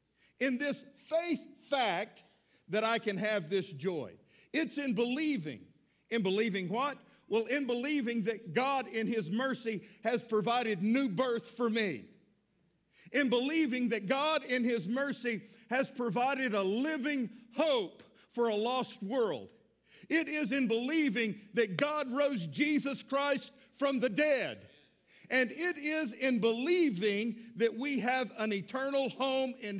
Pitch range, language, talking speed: 220-280 Hz, English, 140 wpm